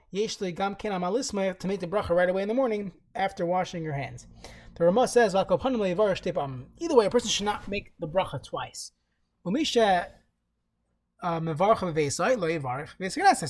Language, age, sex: English, 20-39, male